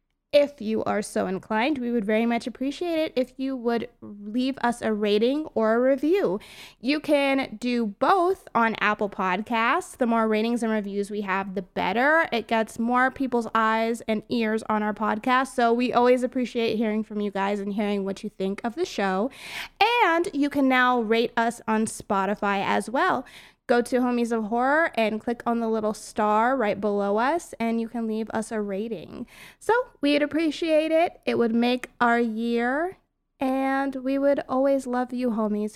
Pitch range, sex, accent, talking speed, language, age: 220-275 Hz, female, American, 185 wpm, English, 20-39